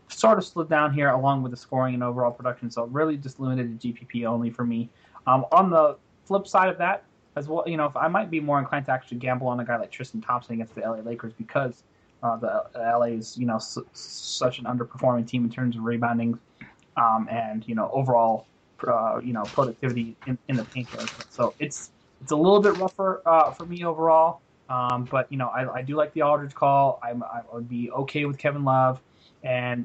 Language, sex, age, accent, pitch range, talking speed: English, male, 20-39, American, 120-145 Hz, 225 wpm